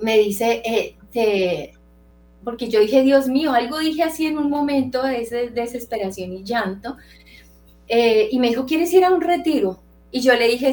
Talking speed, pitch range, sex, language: 180 wpm, 195-245 Hz, female, Spanish